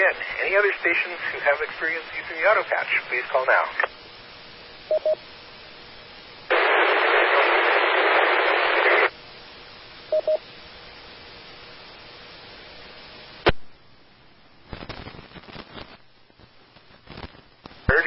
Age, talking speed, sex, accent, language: 40-59, 45 wpm, male, American, English